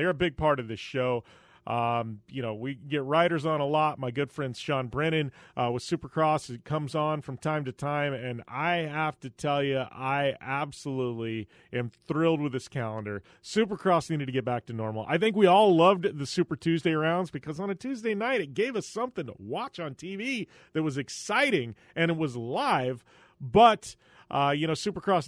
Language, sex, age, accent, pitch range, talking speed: English, male, 30-49, American, 130-170 Hz, 200 wpm